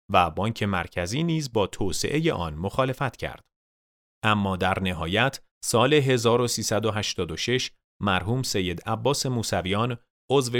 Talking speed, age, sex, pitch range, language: 110 wpm, 30-49, male, 95-120 Hz, Persian